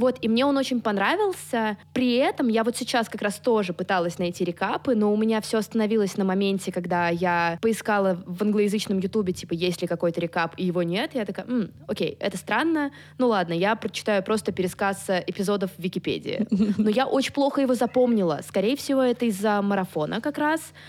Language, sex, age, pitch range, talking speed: Russian, female, 20-39, 185-235 Hz, 185 wpm